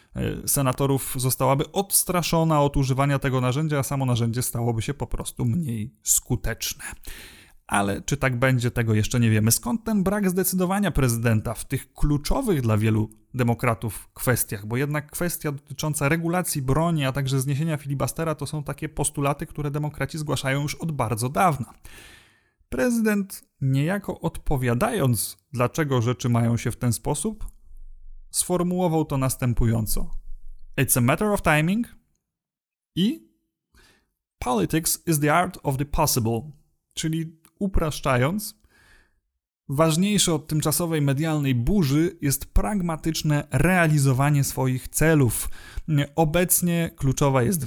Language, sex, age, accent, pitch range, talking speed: Polish, male, 30-49, native, 125-160 Hz, 125 wpm